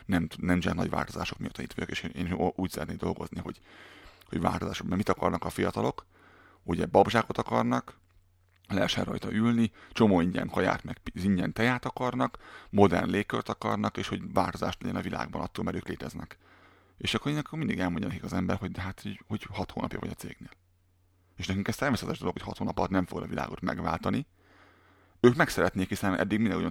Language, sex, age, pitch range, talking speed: Hungarian, male, 30-49, 90-105 Hz, 185 wpm